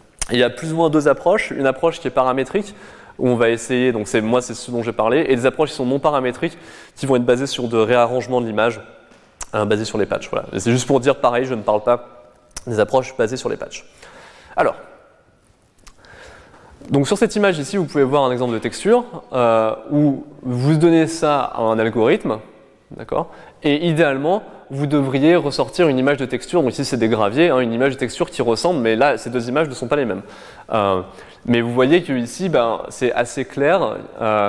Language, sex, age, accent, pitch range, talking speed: French, male, 20-39, French, 120-150 Hz, 220 wpm